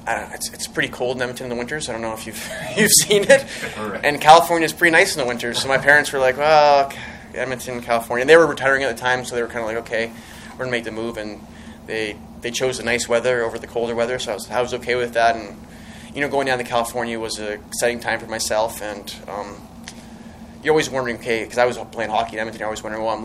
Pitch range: 110-125 Hz